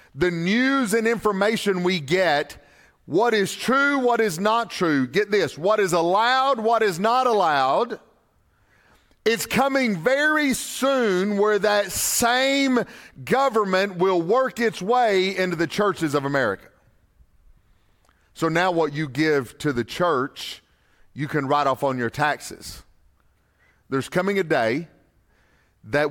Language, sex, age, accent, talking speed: English, male, 40-59, American, 135 wpm